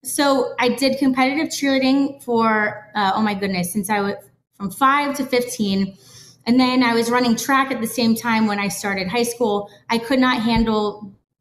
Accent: American